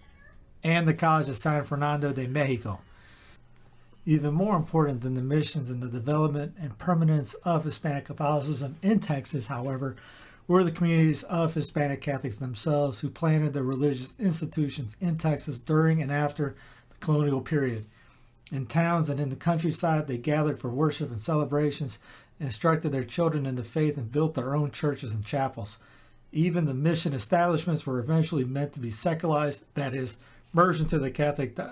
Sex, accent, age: male, American, 40-59